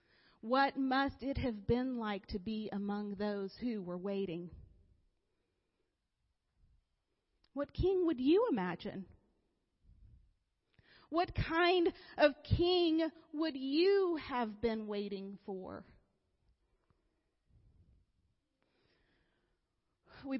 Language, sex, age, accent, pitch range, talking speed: English, female, 40-59, American, 215-300 Hz, 85 wpm